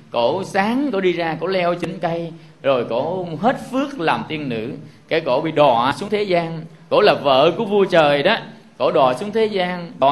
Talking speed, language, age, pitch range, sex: 215 wpm, Vietnamese, 20-39, 145-200 Hz, male